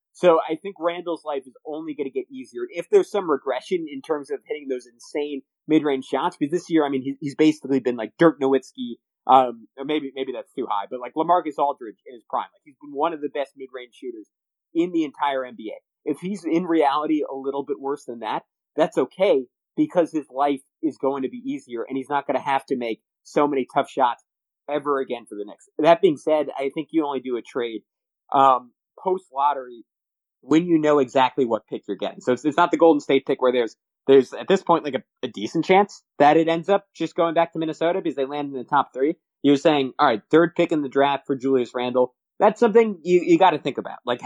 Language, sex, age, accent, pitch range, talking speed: English, male, 30-49, American, 130-170 Hz, 235 wpm